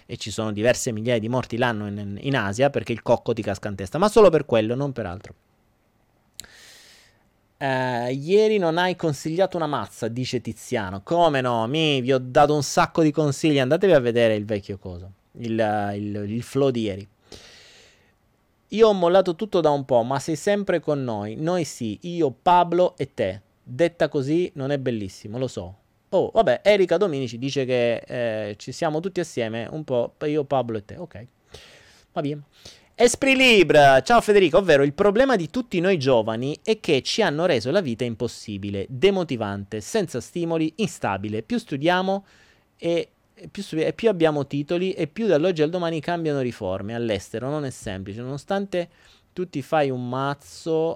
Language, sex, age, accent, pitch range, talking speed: Italian, male, 30-49, native, 115-170 Hz, 170 wpm